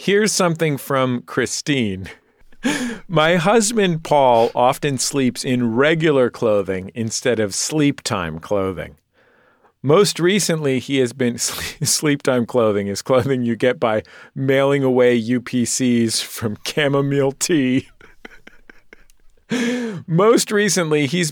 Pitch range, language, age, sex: 115-180 Hz, English, 40-59, male